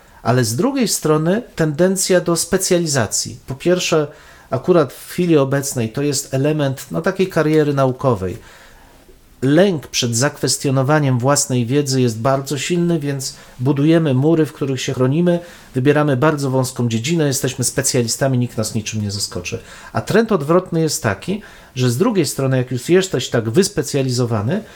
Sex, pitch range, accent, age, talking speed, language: male, 130-165 Hz, native, 40-59, 145 wpm, Polish